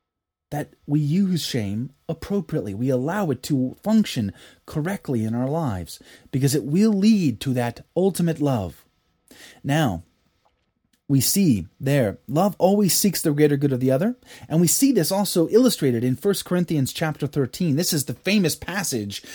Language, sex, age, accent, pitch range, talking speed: English, male, 30-49, American, 120-170 Hz, 160 wpm